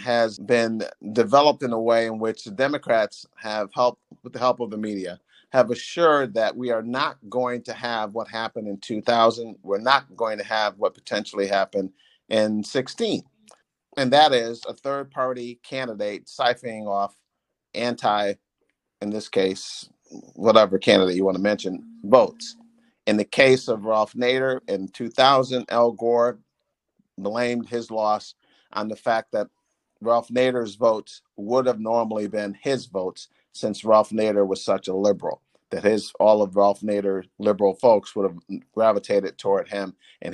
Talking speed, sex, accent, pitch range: 160 wpm, male, American, 100-120 Hz